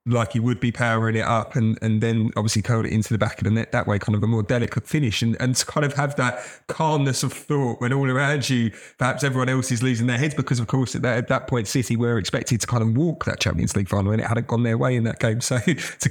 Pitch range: 115-130 Hz